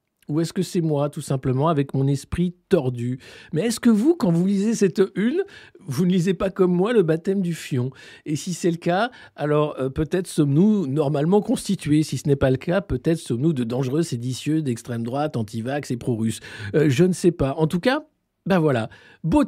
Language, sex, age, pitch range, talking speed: French, male, 50-69, 115-175 Hz, 215 wpm